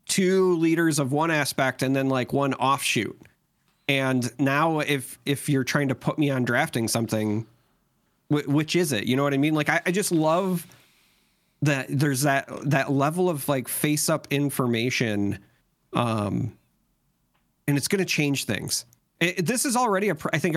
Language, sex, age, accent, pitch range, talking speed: English, male, 40-59, American, 120-150 Hz, 180 wpm